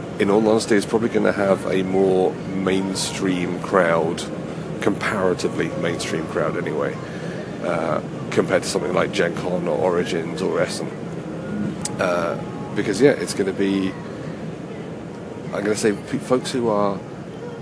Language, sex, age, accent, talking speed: English, male, 40-59, British, 140 wpm